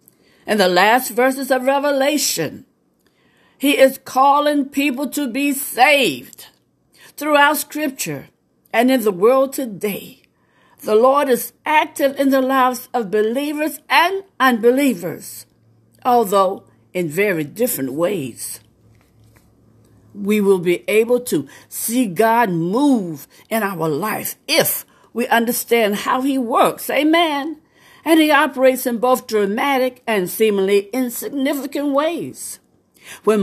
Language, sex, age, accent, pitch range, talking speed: English, female, 60-79, American, 200-275 Hz, 115 wpm